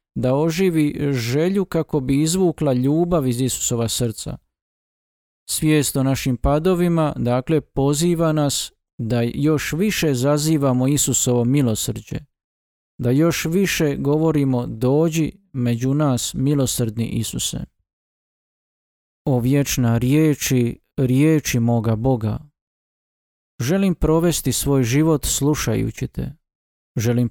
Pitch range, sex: 120-155 Hz, male